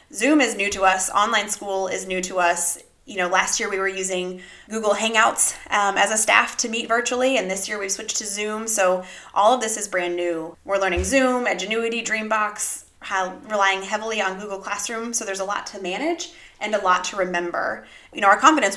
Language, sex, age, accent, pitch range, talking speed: English, female, 20-39, American, 185-225 Hz, 215 wpm